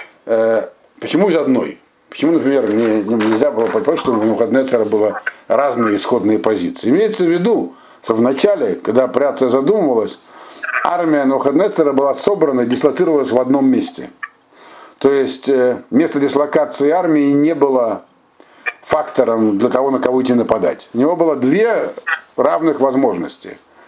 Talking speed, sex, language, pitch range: 135 wpm, male, Russian, 125-200 Hz